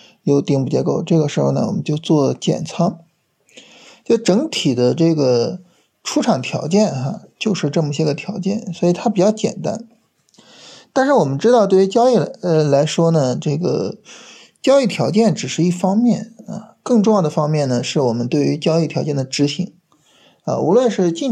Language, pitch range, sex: Chinese, 145-205 Hz, male